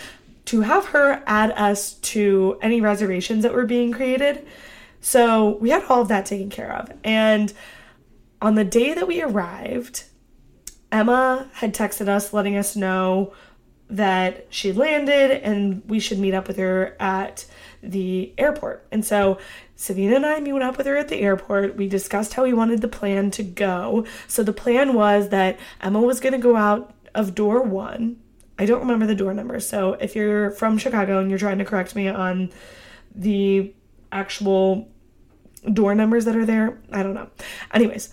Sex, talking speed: female, 175 wpm